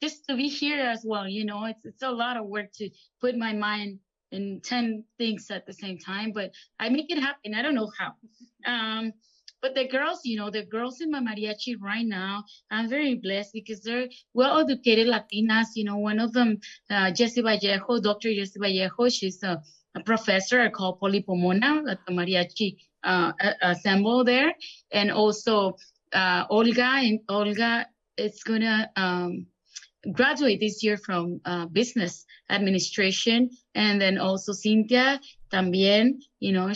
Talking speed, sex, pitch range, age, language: 165 wpm, female, 195-245 Hz, 20-39, English